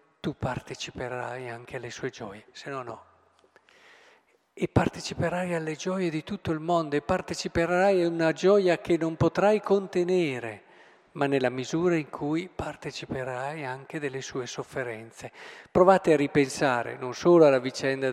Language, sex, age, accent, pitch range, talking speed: Italian, male, 50-69, native, 135-180 Hz, 140 wpm